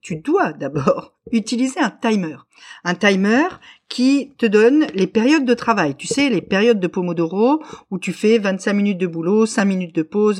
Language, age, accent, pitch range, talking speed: French, 50-69, French, 200-265 Hz, 185 wpm